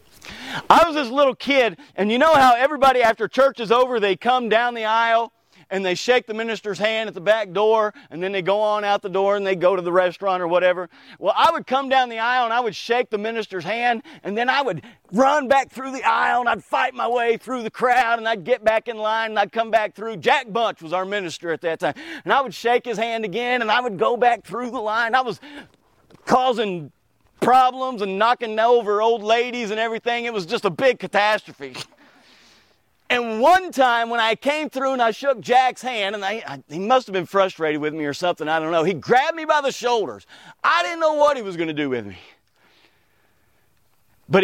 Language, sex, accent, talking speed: English, male, American, 230 wpm